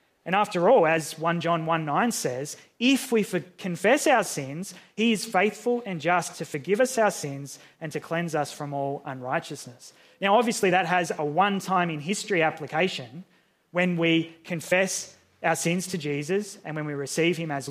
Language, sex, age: English, male, 20-39